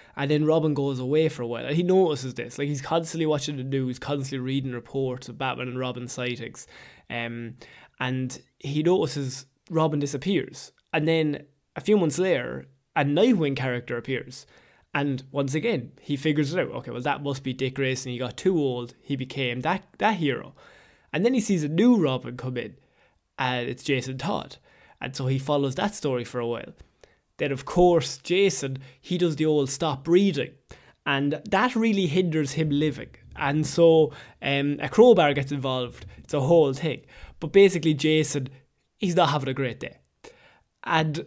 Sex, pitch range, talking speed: male, 130-160 Hz, 180 wpm